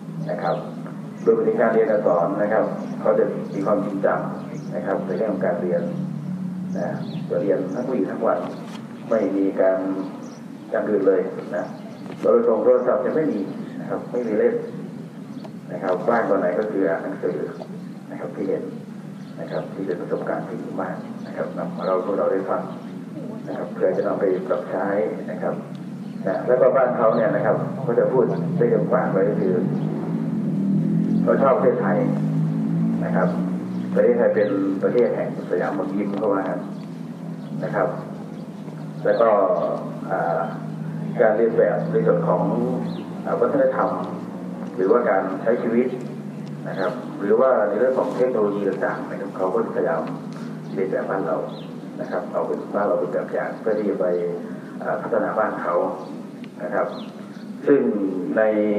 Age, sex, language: 30-49, male, Thai